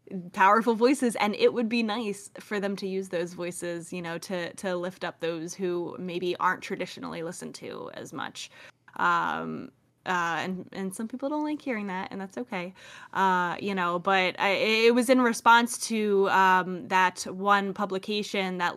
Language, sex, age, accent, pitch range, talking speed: English, female, 20-39, American, 180-210 Hz, 180 wpm